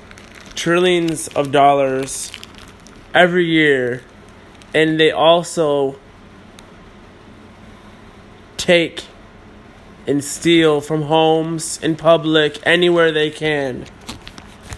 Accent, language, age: American, English, 20-39